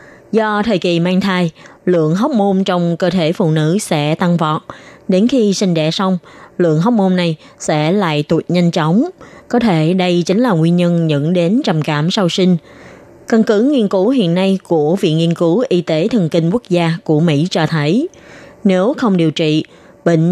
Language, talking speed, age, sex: Vietnamese, 200 wpm, 20-39, female